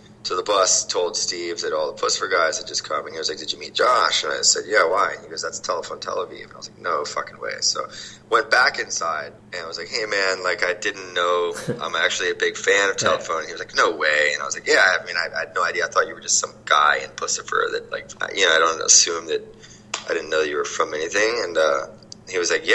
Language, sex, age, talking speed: English, male, 20-39, 285 wpm